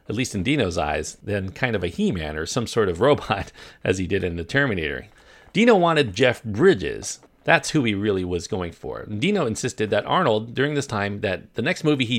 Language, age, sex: English, 40-59, male